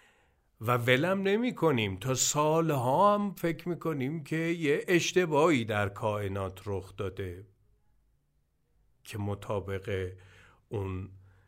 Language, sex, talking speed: Persian, male, 105 wpm